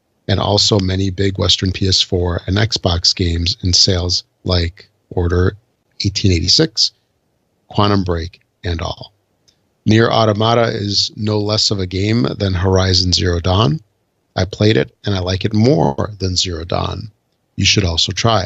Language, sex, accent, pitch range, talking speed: English, male, American, 95-110 Hz, 145 wpm